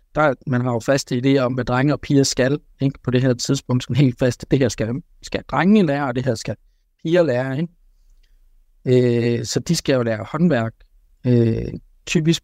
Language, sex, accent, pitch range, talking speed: Danish, male, native, 115-135 Hz, 205 wpm